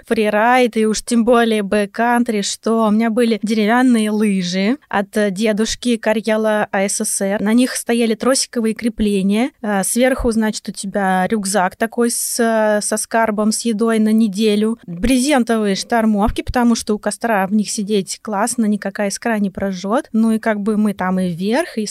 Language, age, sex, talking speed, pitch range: Russian, 20-39, female, 155 wpm, 210-235 Hz